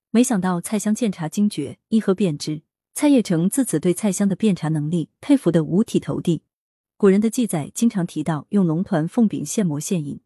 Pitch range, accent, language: 160-220 Hz, native, Chinese